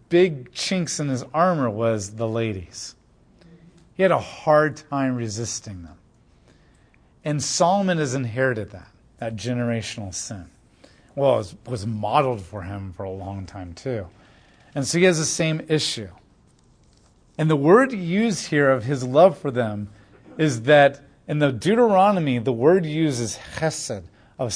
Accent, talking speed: American, 155 wpm